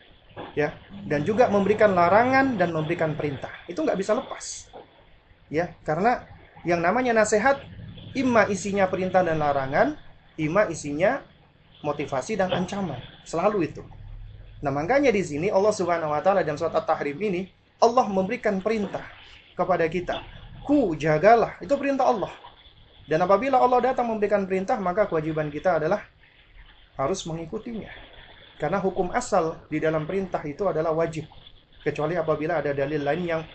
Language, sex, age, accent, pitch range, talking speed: Indonesian, male, 30-49, native, 150-200 Hz, 135 wpm